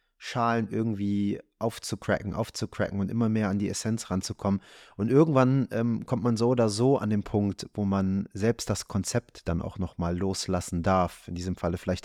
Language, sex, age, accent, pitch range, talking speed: German, male, 30-49, German, 100-115 Hz, 180 wpm